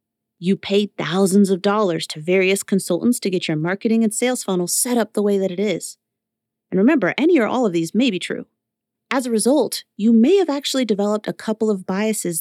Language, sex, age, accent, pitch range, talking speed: English, female, 30-49, American, 180-250 Hz, 215 wpm